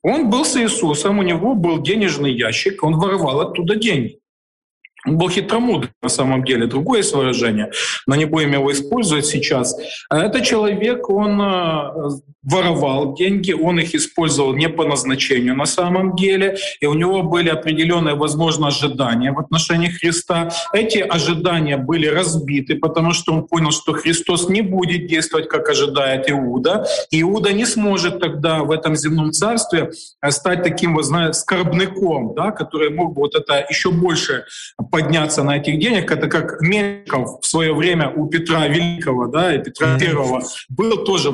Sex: male